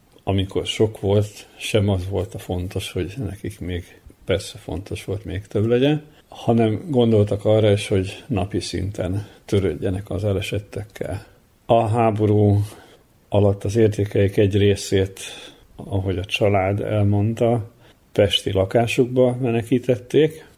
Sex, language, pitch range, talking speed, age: male, Hungarian, 100-120 Hz, 120 wpm, 50-69